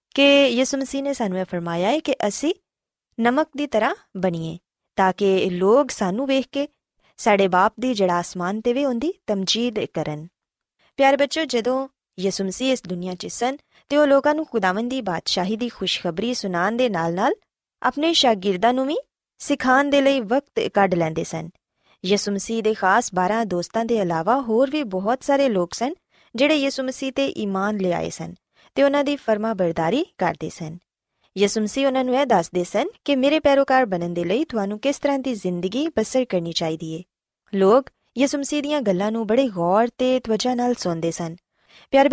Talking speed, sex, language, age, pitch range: 160 wpm, female, Punjabi, 20-39, 185-275 Hz